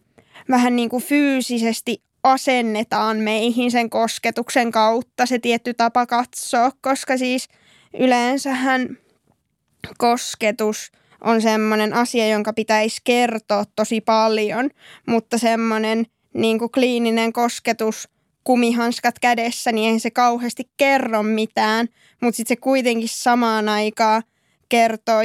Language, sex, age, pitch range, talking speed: Finnish, female, 20-39, 230-250 Hz, 105 wpm